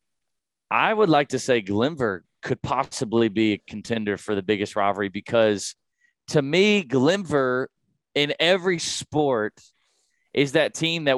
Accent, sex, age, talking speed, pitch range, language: American, male, 30-49, 140 wpm, 110-135 Hz, English